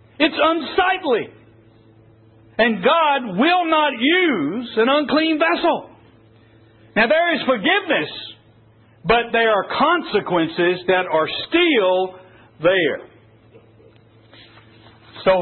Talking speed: 90 wpm